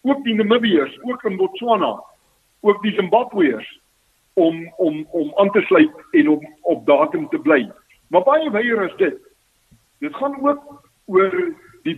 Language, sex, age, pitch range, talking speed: Swedish, male, 50-69, 190-290 Hz, 155 wpm